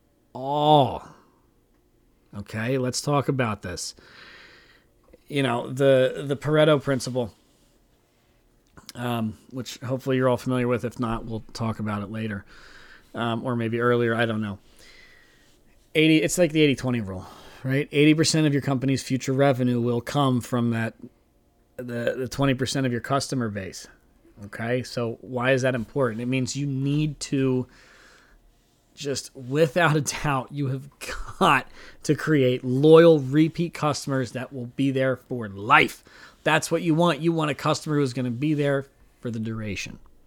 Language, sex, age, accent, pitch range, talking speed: English, male, 40-59, American, 120-140 Hz, 155 wpm